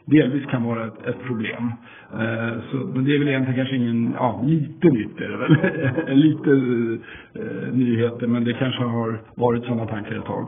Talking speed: 190 wpm